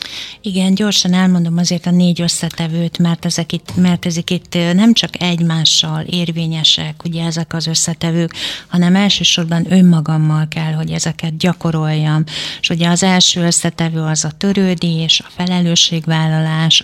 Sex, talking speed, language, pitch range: female, 135 wpm, Hungarian, 160-175 Hz